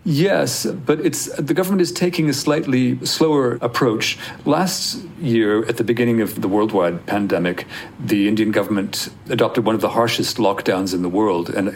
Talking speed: 170 wpm